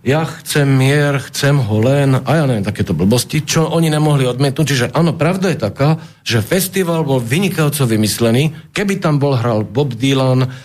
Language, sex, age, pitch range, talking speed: Slovak, male, 50-69, 120-150 Hz, 175 wpm